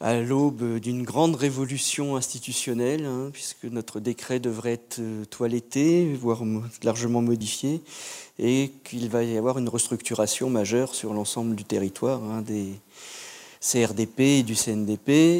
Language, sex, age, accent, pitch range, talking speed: French, male, 50-69, French, 115-135 Hz, 135 wpm